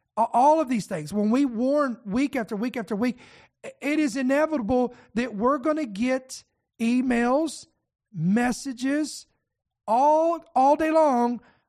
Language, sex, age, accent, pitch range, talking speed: English, male, 50-69, American, 220-275 Hz, 130 wpm